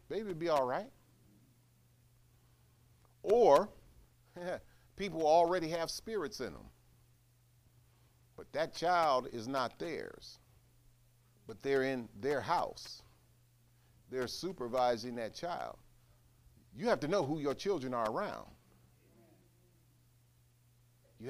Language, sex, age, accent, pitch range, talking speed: English, male, 40-59, American, 120-150 Hz, 105 wpm